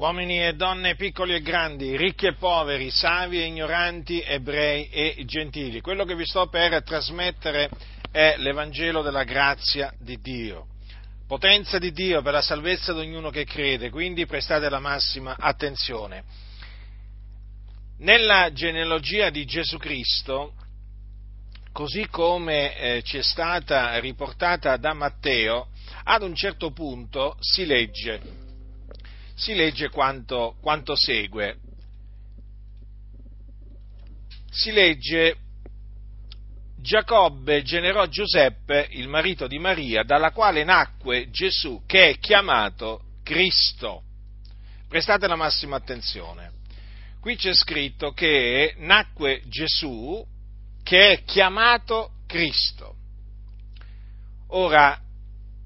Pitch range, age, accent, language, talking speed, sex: 100-165 Hz, 50-69, native, Italian, 105 wpm, male